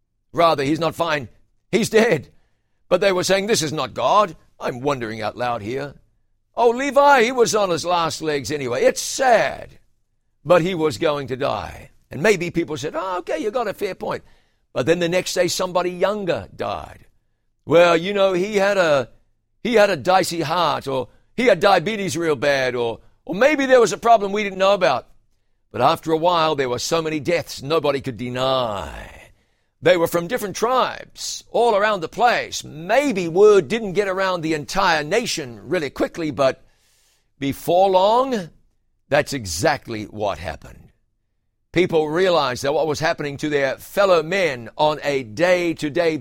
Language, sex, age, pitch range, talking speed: English, male, 60-79, 130-190 Hz, 170 wpm